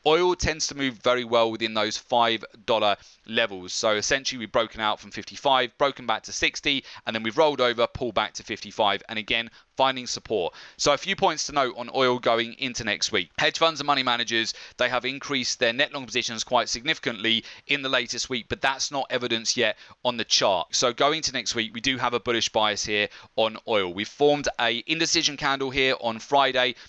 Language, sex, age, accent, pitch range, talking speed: English, male, 30-49, British, 115-135 Hz, 210 wpm